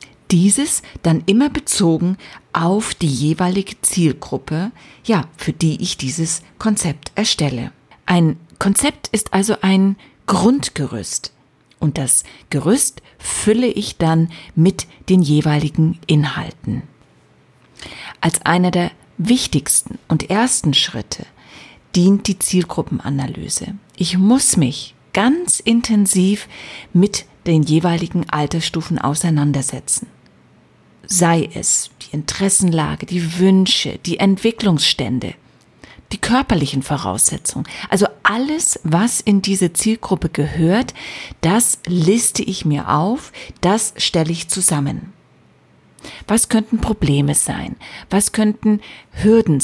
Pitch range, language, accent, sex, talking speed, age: 155-210 Hz, German, German, female, 105 wpm, 50-69